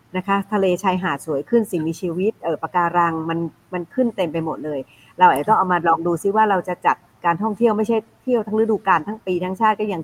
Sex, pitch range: female, 165-205 Hz